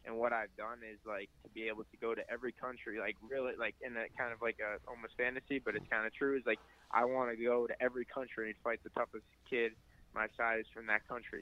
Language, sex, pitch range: English, male, 105-115 Hz